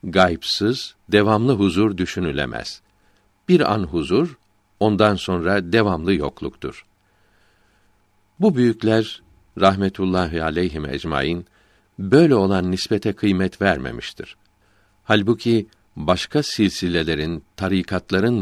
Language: Turkish